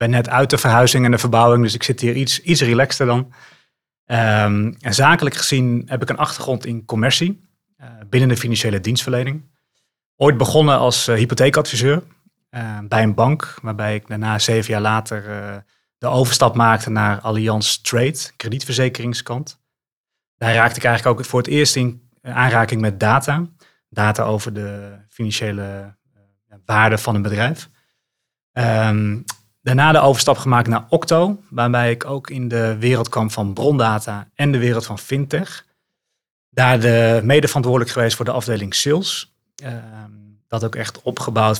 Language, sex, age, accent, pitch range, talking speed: Dutch, male, 30-49, Dutch, 110-130 Hz, 155 wpm